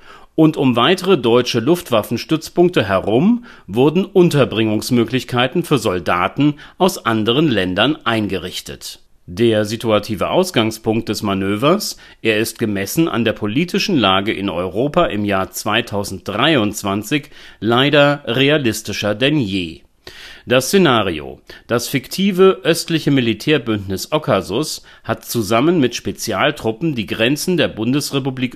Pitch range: 105-155 Hz